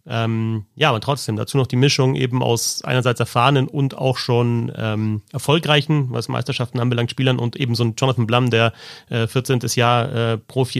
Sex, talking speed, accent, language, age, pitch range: male, 185 wpm, German, German, 30-49, 120-145 Hz